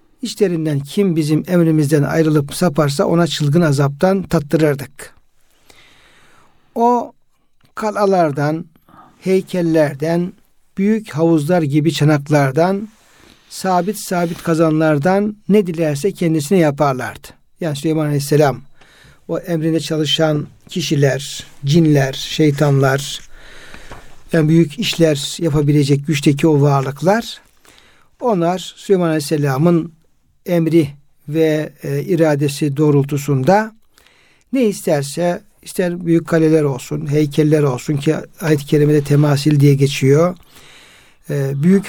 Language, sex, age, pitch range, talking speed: Turkish, male, 60-79, 145-175 Hz, 90 wpm